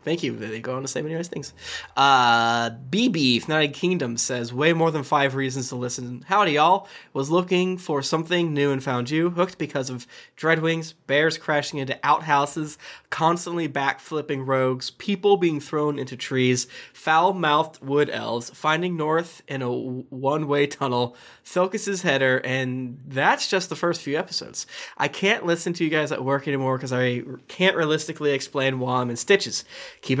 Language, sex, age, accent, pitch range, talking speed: English, male, 20-39, American, 130-170 Hz, 170 wpm